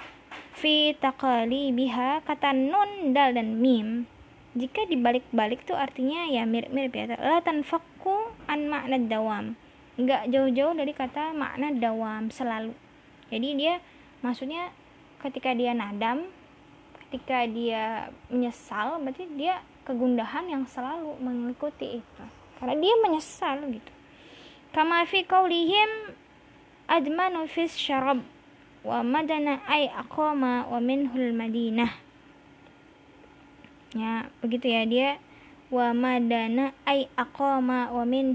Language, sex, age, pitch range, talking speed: Indonesian, female, 20-39, 240-295 Hz, 100 wpm